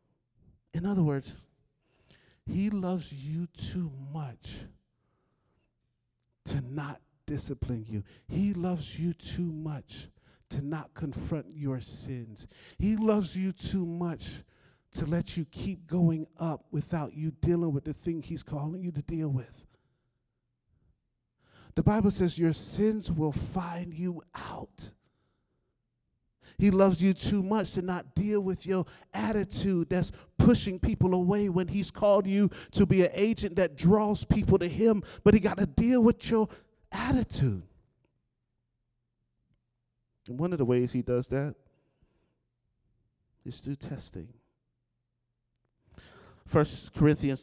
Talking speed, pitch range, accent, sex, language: 130 wpm, 130-185 Hz, American, male, English